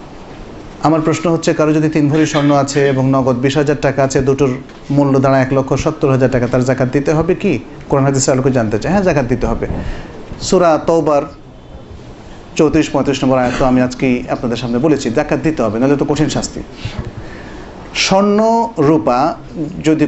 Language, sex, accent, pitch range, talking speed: Bengali, male, native, 130-155 Hz, 145 wpm